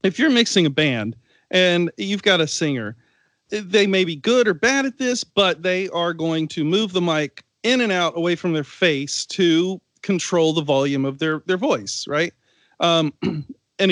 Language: English